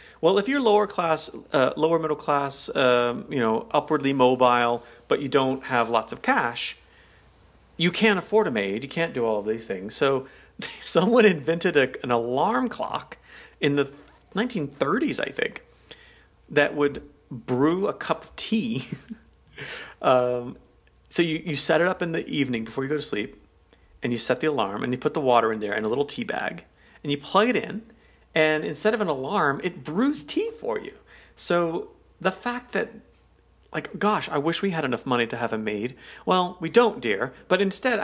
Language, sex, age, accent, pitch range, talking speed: English, male, 40-59, American, 125-185 Hz, 190 wpm